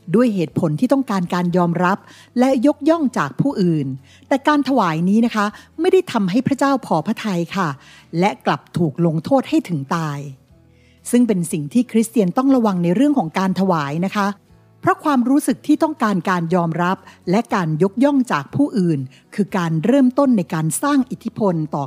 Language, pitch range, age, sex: Thai, 165-245 Hz, 60-79, female